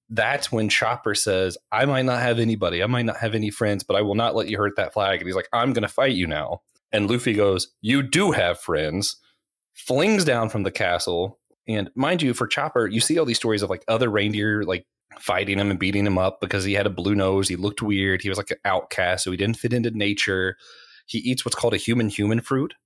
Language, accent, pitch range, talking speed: English, American, 100-120 Hz, 245 wpm